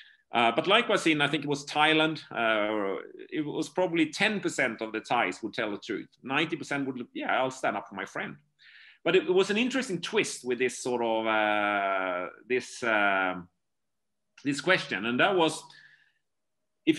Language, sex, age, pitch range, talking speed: English, male, 40-59, 125-200 Hz, 180 wpm